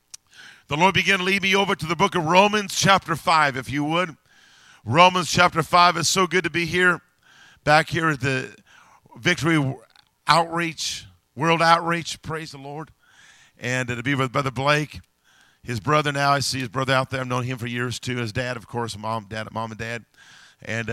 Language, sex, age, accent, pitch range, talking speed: English, male, 50-69, American, 115-165 Hz, 190 wpm